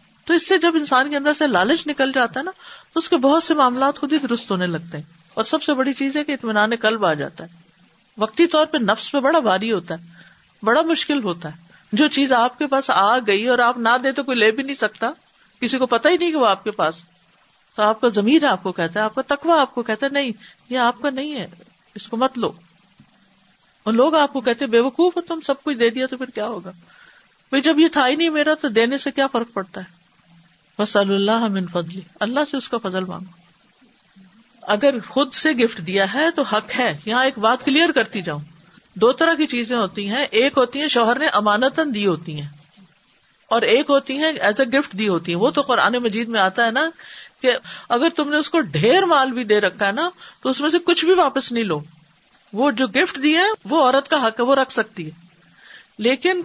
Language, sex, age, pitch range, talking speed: Urdu, female, 50-69, 200-290 Hz, 240 wpm